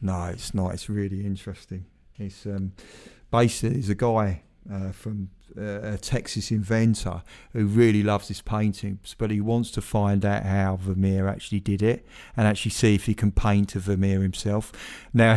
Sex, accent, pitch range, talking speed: male, British, 100-115 Hz, 170 wpm